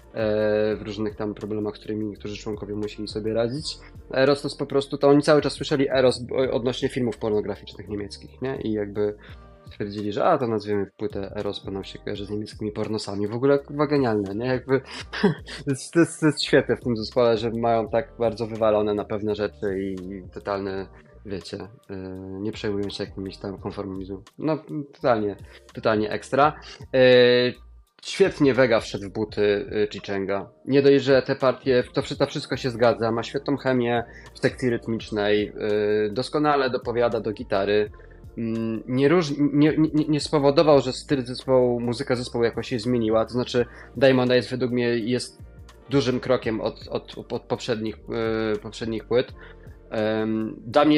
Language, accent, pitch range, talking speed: Polish, native, 105-130 Hz, 155 wpm